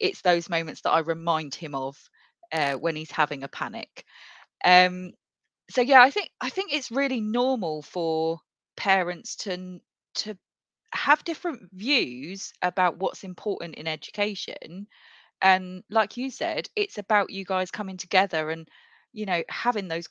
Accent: British